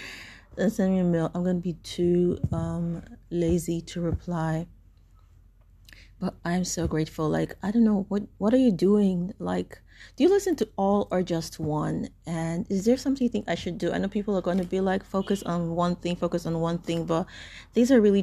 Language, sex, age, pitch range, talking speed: English, female, 30-49, 155-190 Hz, 205 wpm